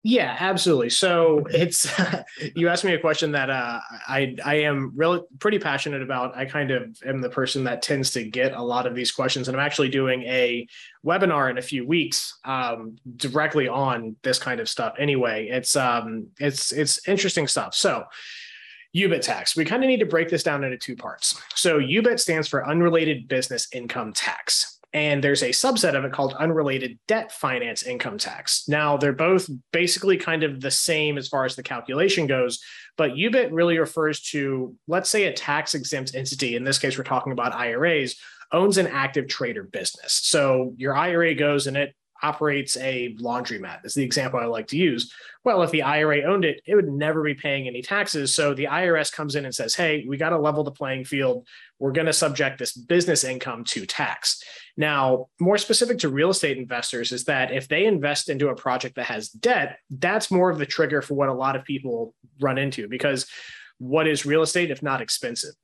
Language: English